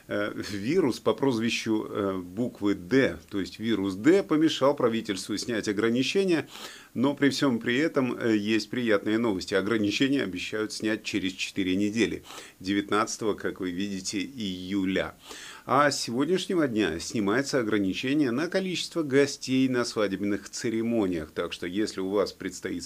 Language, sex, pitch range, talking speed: Russian, male, 105-135 Hz, 130 wpm